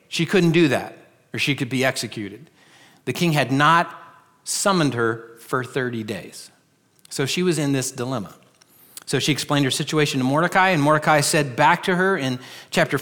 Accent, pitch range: American, 130-170 Hz